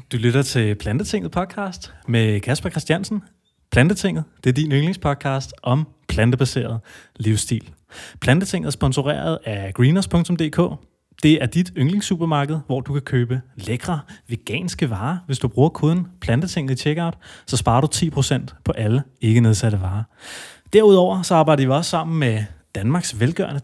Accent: native